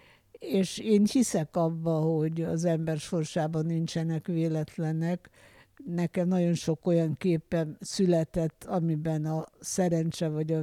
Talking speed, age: 120 wpm, 60-79